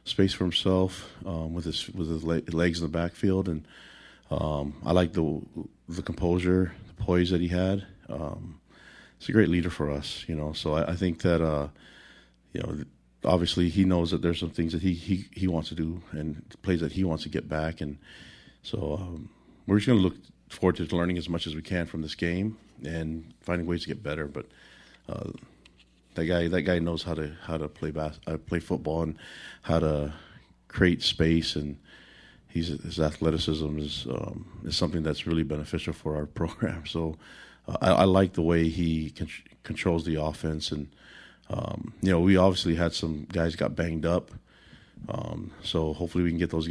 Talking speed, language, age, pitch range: 195 wpm, English, 40-59, 80-90 Hz